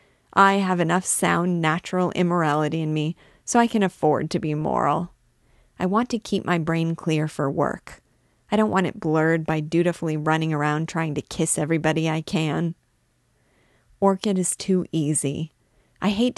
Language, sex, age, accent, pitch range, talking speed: English, female, 30-49, American, 155-185 Hz, 165 wpm